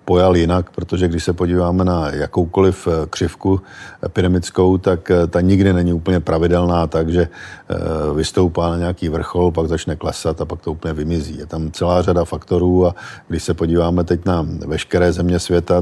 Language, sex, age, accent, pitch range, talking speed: Czech, male, 50-69, native, 85-95 Hz, 165 wpm